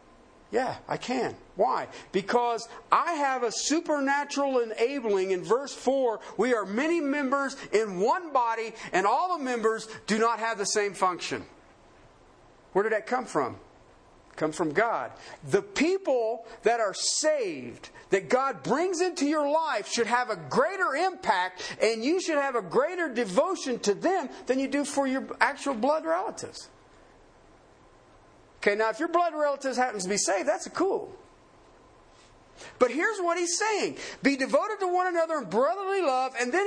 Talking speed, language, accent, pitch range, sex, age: 160 wpm, English, American, 220-330 Hz, male, 50-69